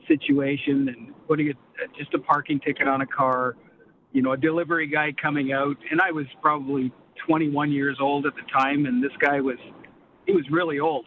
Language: English